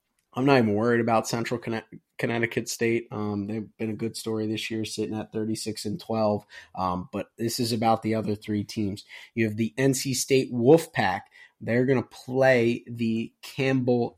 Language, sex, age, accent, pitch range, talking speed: English, male, 20-39, American, 105-120 Hz, 180 wpm